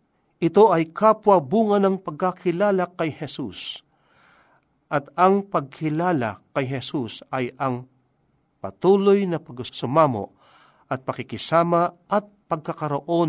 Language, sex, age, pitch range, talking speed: Filipino, male, 50-69, 120-170 Hz, 95 wpm